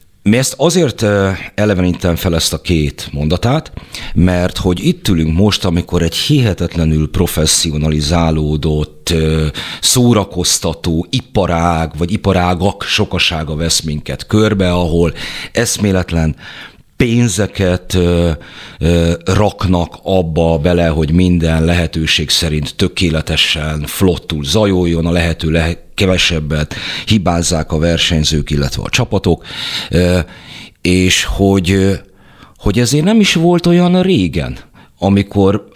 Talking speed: 95 wpm